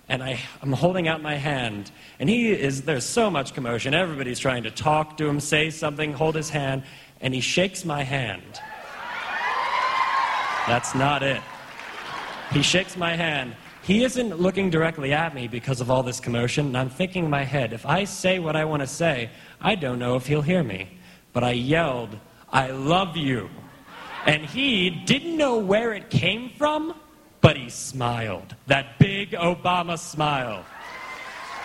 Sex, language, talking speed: male, English, 170 wpm